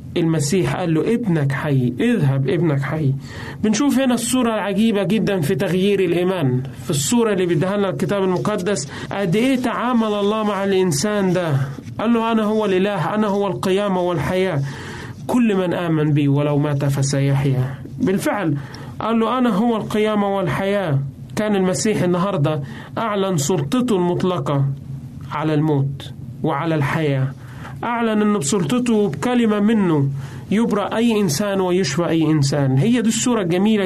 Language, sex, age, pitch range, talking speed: Arabic, male, 30-49, 140-205 Hz, 135 wpm